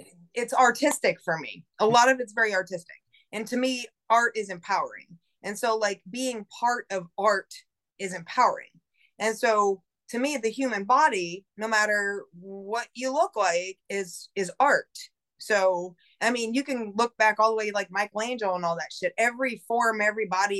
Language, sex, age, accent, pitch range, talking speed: English, female, 20-39, American, 195-240 Hz, 180 wpm